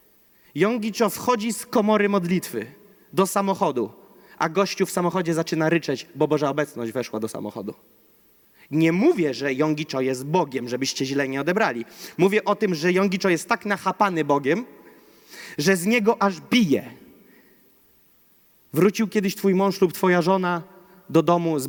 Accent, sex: native, male